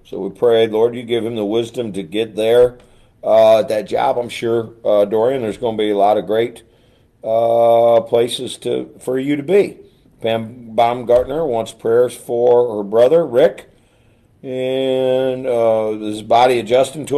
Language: English